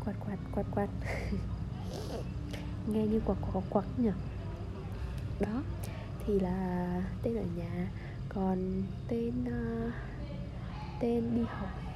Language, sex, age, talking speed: Vietnamese, female, 20-39, 105 wpm